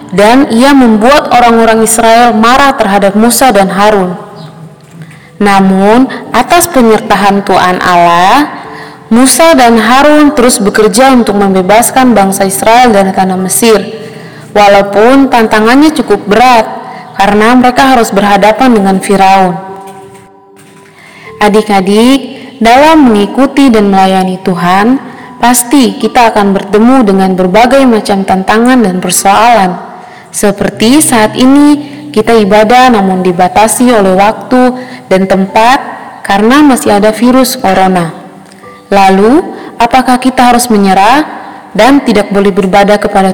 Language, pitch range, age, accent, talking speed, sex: Indonesian, 195-255 Hz, 20-39, native, 110 wpm, female